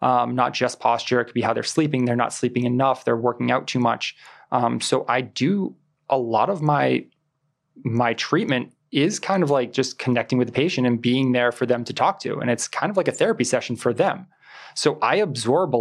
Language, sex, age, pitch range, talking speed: English, male, 20-39, 120-135 Hz, 230 wpm